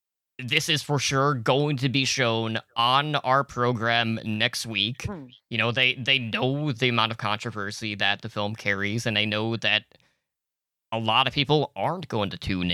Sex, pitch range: male, 110-135 Hz